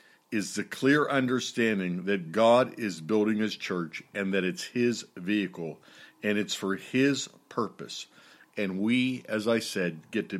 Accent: American